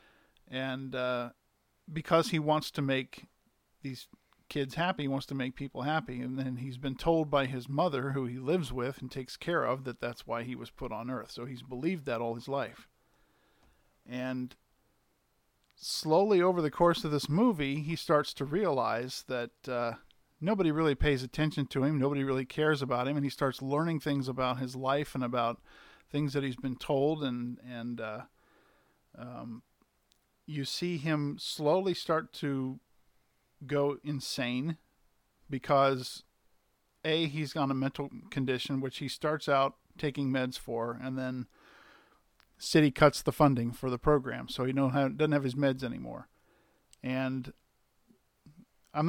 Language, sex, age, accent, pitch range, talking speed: English, male, 50-69, American, 130-150 Hz, 160 wpm